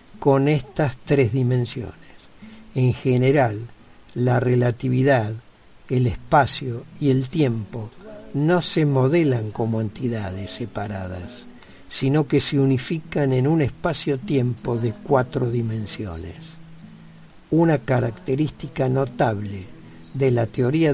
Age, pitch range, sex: 60-79, 115-150 Hz, male